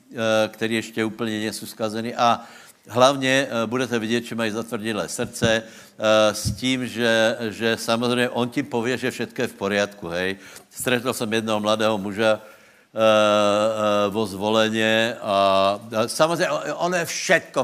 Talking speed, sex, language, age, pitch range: 135 wpm, male, Slovak, 70-89, 105-125 Hz